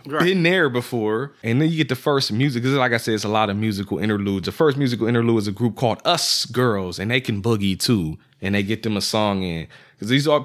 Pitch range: 100-125 Hz